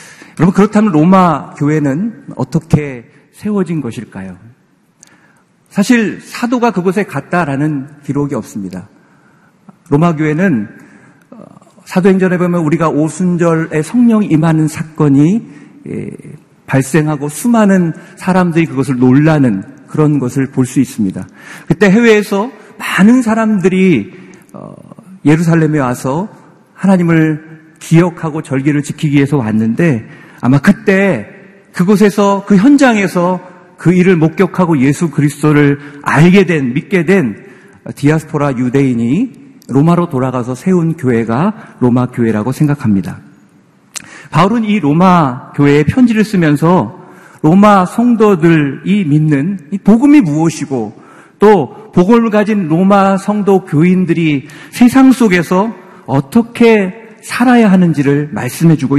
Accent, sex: native, male